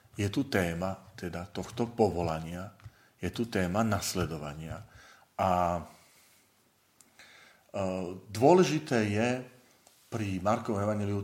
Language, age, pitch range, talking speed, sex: Slovak, 40-59, 90-110 Hz, 90 wpm, male